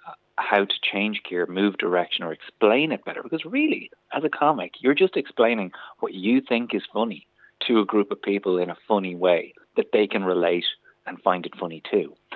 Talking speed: 200 wpm